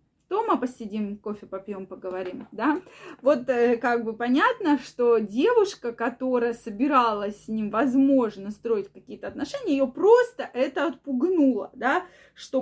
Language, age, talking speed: Russian, 20-39, 125 wpm